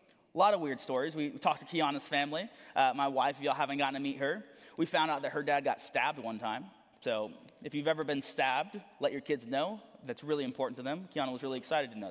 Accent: American